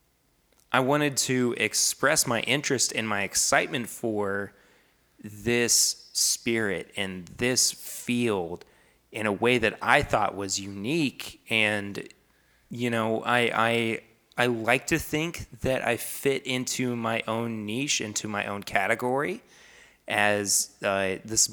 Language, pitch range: English, 100-125 Hz